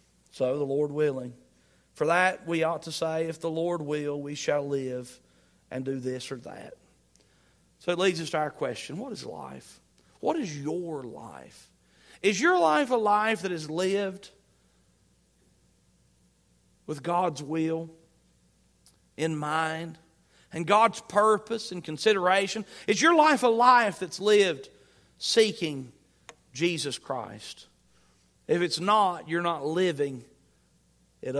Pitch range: 135-205 Hz